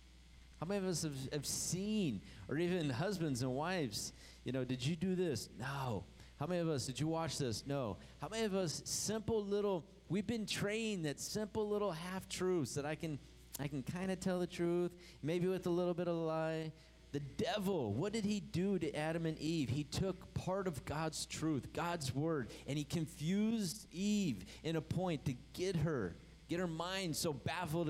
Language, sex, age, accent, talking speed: English, male, 30-49, American, 200 wpm